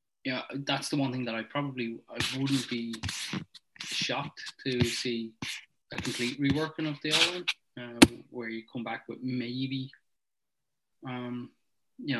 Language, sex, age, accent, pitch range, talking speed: Portuguese, male, 20-39, Irish, 115-130 Hz, 145 wpm